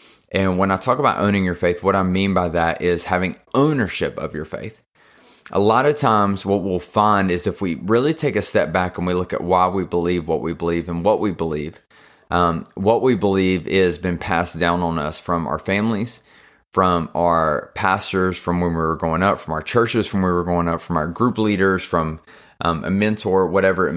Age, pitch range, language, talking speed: 30-49, 85-100 Hz, English, 225 wpm